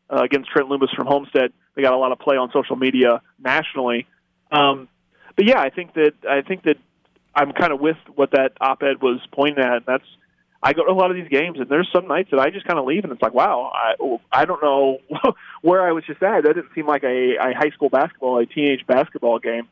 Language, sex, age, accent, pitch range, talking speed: English, male, 30-49, American, 125-160 Hz, 245 wpm